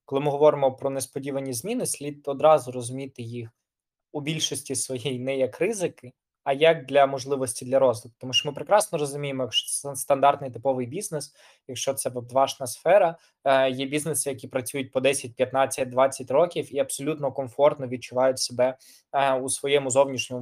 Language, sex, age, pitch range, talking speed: Ukrainian, male, 20-39, 130-145 Hz, 150 wpm